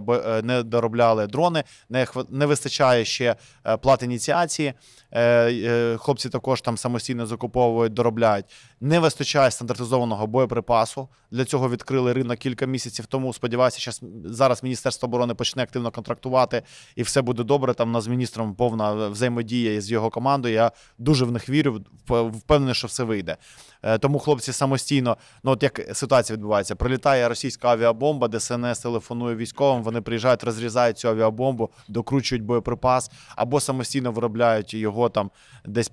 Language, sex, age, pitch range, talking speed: Ukrainian, male, 20-39, 115-130 Hz, 135 wpm